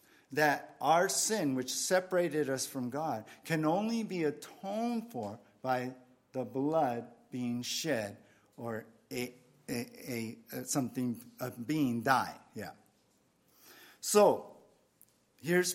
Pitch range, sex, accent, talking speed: 135-175 Hz, male, American, 110 wpm